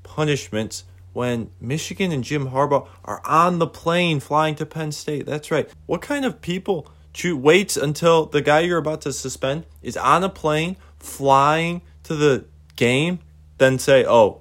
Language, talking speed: English, 160 wpm